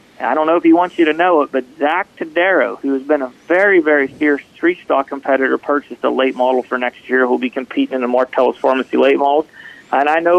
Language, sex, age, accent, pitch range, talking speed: English, male, 40-59, American, 140-180 Hz, 245 wpm